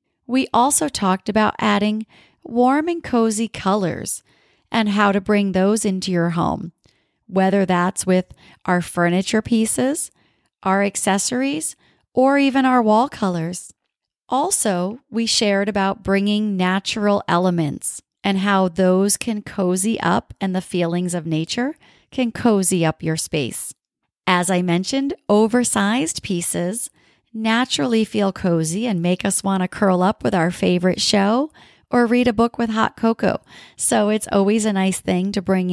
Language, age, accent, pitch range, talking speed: English, 40-59, American, 180-230 Hz, 145 wpm